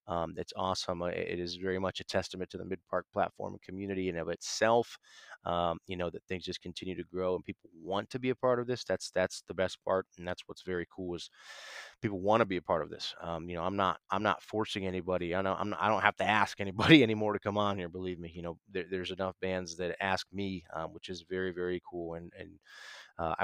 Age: 30-49